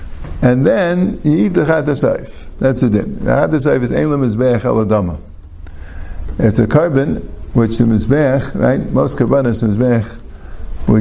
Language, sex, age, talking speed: English, male, 50-69, 130 wpm